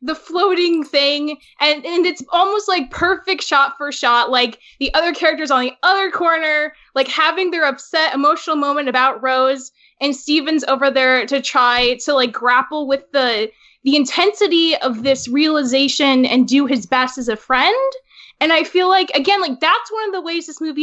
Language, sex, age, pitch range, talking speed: English, female, 10-29, 260-330 Hz, 185 wpm